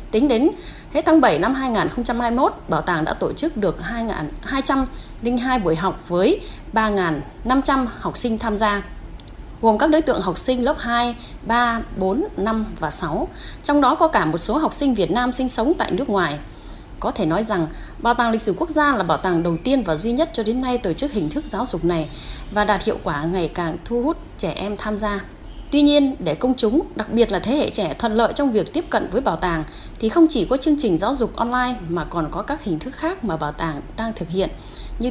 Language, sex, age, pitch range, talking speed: Vietnamese, female, 20-39, 185-270 Hz, 225 wpm